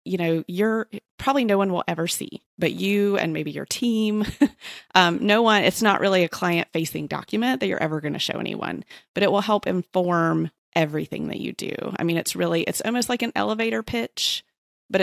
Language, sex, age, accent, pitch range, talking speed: English, female, 30-49, American, 150-185 Hz, 210 wpm